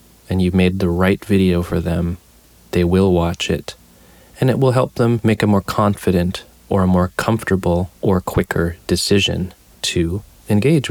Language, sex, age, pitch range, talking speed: English, male, 30-49, 85-110 Hz, 165 wpm